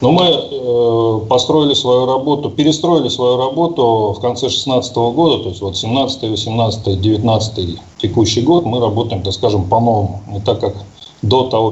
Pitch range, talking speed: 105-130 Hz, 160 wpm